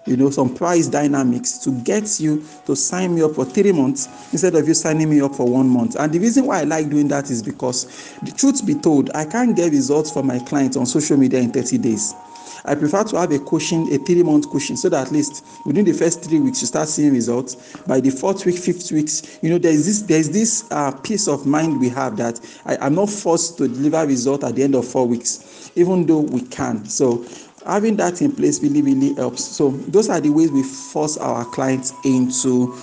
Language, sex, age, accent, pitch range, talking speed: English, male, 50-69, Nigerian, 130-205 Hz, 235 wpm